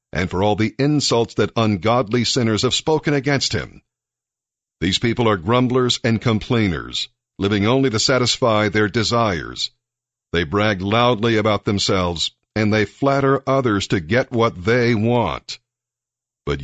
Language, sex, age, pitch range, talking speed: English, male, 60-79, 100-125 Hz, 140 wpm